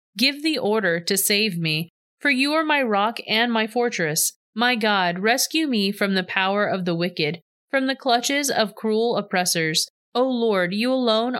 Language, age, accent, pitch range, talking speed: English, 30-49, American, 180-245 Hz, 180 wpm